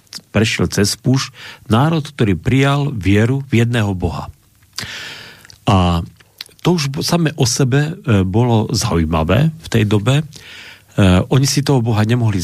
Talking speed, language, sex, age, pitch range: 125 wpm, Slovak, male, 40-59, 100-130 Hz